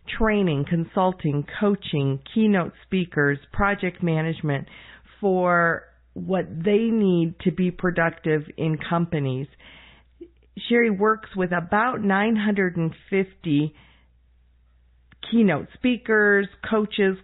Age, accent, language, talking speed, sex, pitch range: 50-69, American, English, 85 wpm, female, 145-185 Hz